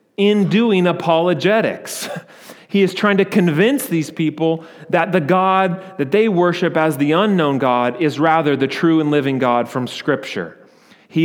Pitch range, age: 140-180 Hz, 30-49